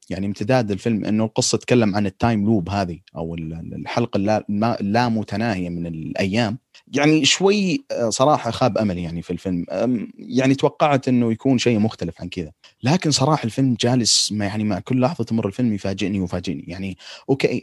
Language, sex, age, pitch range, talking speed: Arabic, male, 30-49, 100-130 Hz, 155 wpm